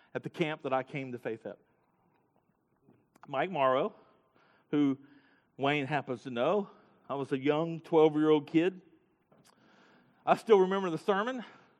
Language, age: English, 40-59